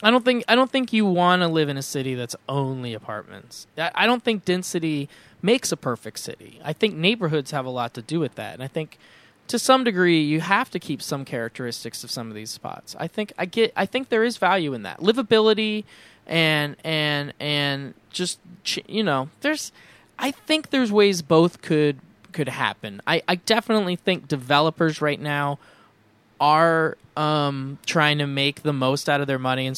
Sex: male